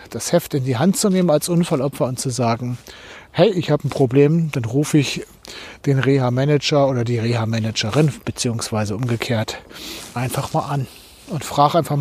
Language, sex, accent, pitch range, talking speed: German, male, German, 125-155 Hz, 165 wpm